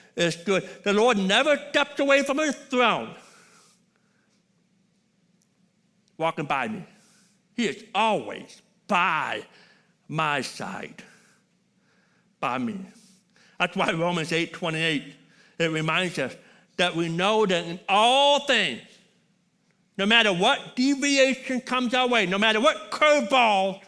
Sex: male